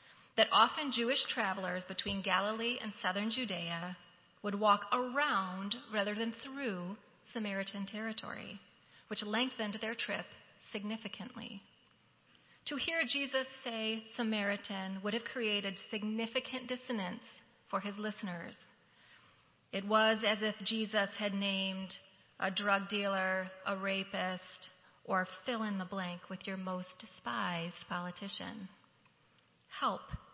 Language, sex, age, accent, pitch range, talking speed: English, female, 30-49, American, 190-230 Hz, 115 wpm